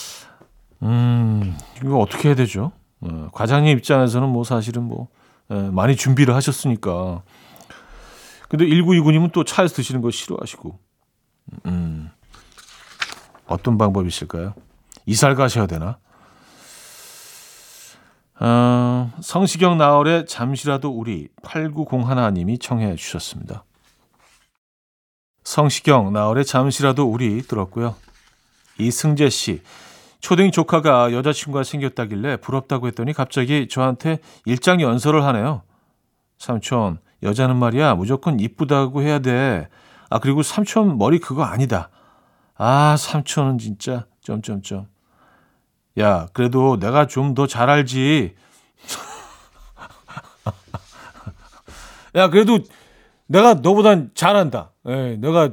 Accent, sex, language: native, male, Korean